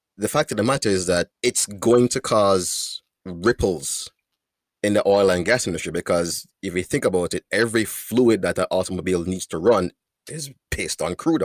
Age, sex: 30-49, male